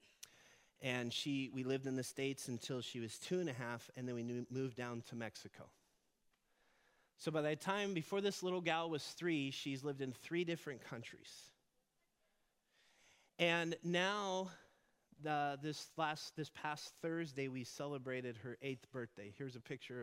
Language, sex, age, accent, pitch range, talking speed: English, male, 30-49, American, 130-180 Hz, 160 wpm